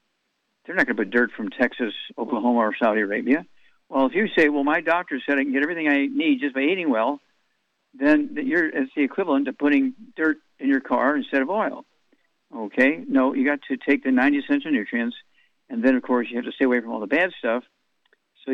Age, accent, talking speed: 60-79, American, 225 wpm